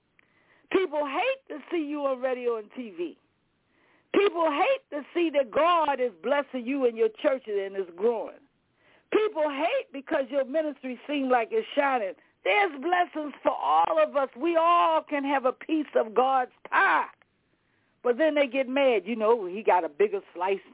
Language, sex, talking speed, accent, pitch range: English, female, 170 wpm, American, 240-315 Hz